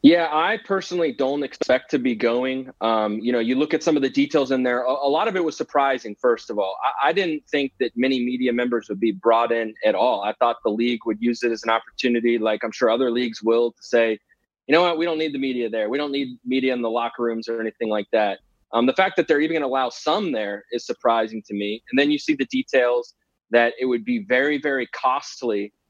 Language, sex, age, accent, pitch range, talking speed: English, male, 20-39, American, 115-145 Hz, 255 wpm